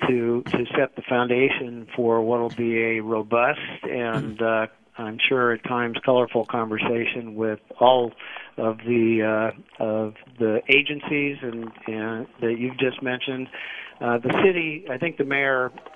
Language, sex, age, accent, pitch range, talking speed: English, male, 50-69, American, 115-130 Hz, 150 wpm